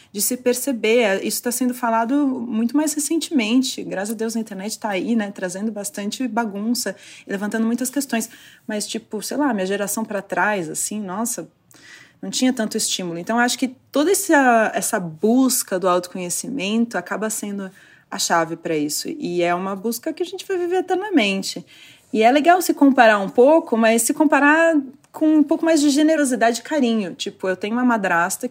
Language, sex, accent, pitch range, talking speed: Portuguese, female, Brazilian, 195-260 Hz, 180 wpm